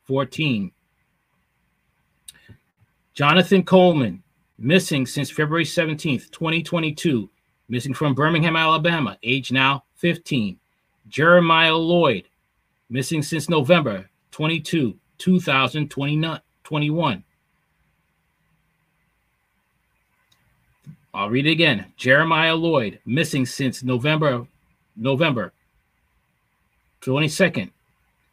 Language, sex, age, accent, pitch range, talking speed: English, male, 30-49, American, 130-170 Hz, 75 wpm